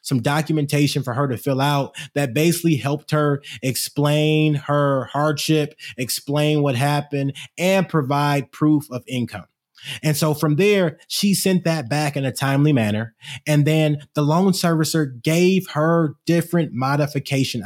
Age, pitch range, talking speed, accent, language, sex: 20-39, 135-170 Hz, 145 wpm, American, English, male